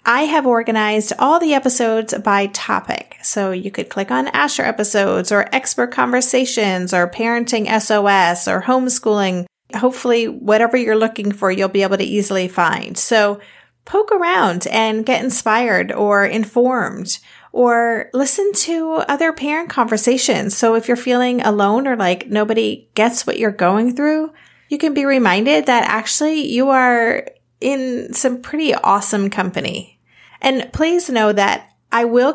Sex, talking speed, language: female, 150 wpm, English